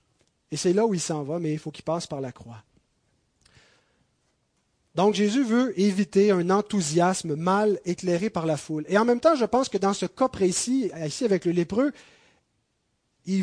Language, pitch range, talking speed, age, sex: French, 165-225 Hz, 190 wpm, 30-49, male